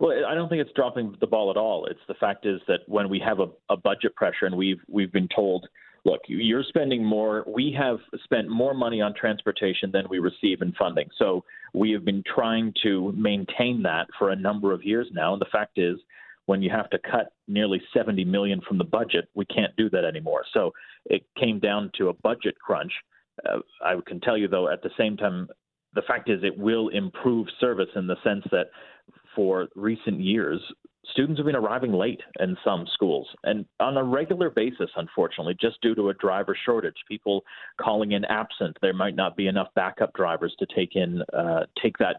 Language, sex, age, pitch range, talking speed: English, male, 30-49, 95-115 Hz, 210 wpm